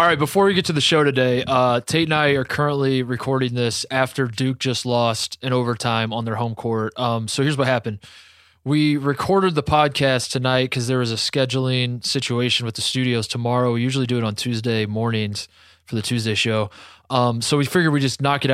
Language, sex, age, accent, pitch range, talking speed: English, male, 20-39, American, 115-140 Hz, 215 wpm